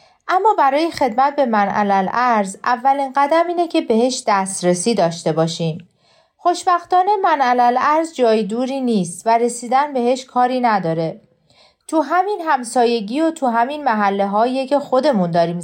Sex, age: female, 40-59